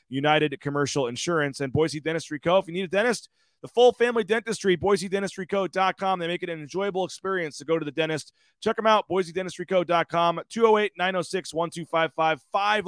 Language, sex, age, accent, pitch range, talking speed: English, male, 30-49, American, 150-185 Hz, 160 wpm